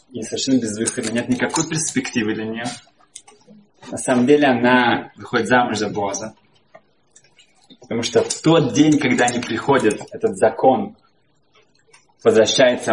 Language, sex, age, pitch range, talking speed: Russian, male, 20-39, 105-140 Hz, 130 wpm